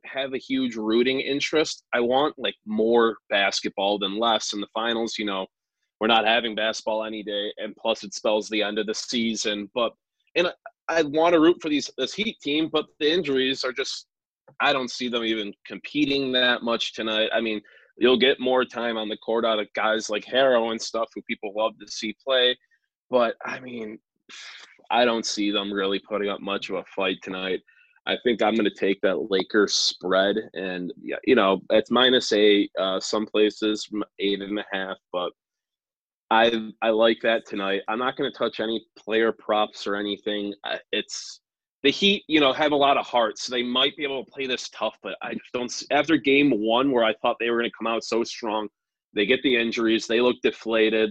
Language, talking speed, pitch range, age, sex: English, 205 wpm, 105-125 Hz, 20-39, male